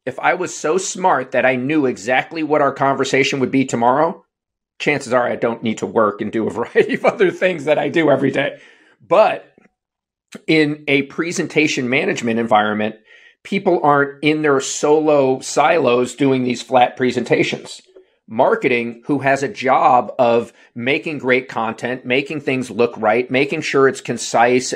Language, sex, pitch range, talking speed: English, male, 130-160 Hz, 160 wpm